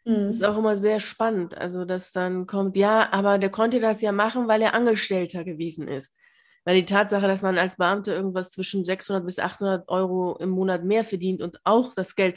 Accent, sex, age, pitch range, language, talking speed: German, female, 20-39, 185-225 Hz, German, 210 wpm